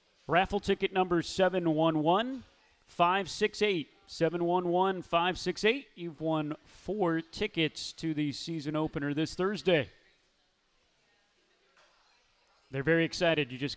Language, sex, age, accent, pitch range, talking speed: English, male, 30-49, American, 165-195 Hz, 110 wpm